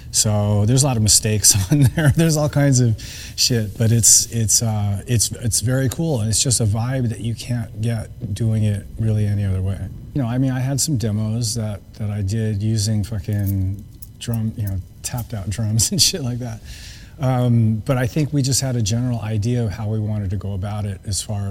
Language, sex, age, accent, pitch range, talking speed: English, male, 30-49, American, 105-120 Hz, 225 wpm